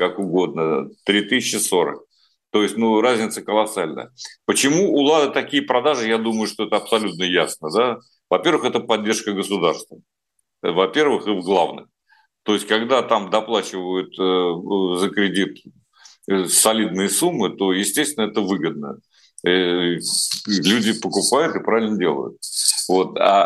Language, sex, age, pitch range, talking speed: Russian, male, 50-69, 100-160 Hz, 120 wpm